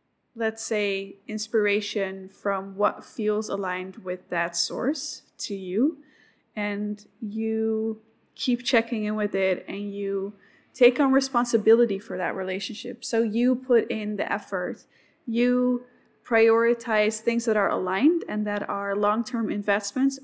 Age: 20-39